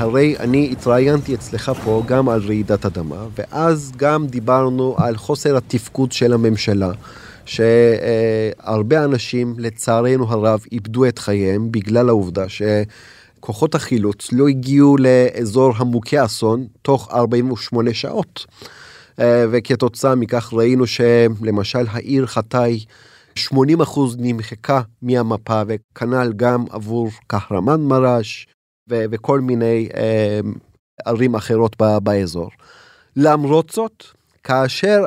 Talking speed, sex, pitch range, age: 105 wpm, male, 110-140 Hz, 30-49